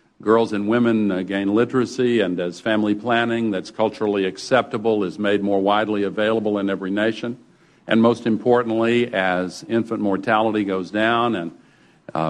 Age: 50-69